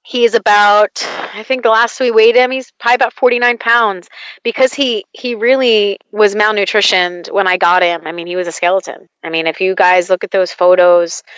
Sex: female